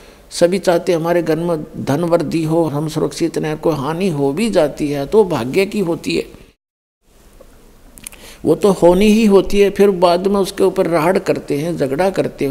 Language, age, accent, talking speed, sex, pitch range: Hindi, 60-79, native, 180 wpm, male, 145-185 Hz